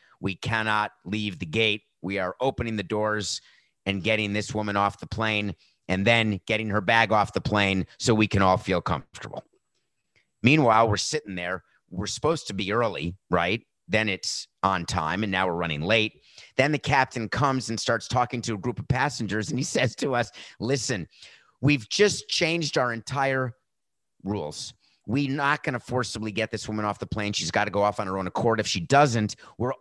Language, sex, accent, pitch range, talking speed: English, male, American, 105-130 Hz, 195 wpm